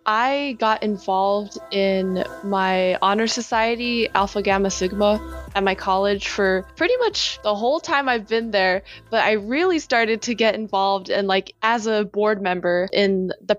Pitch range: 200-235 Hz